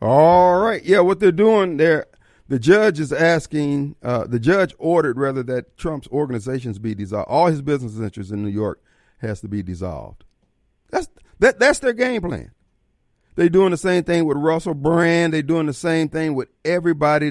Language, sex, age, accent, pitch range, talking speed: English, male, 40-59, American, 120-165 Hz, 185 wpm